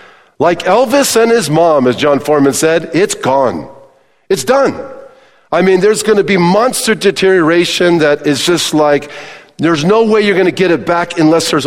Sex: male